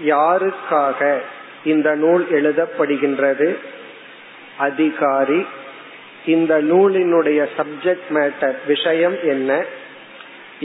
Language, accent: Tamil, native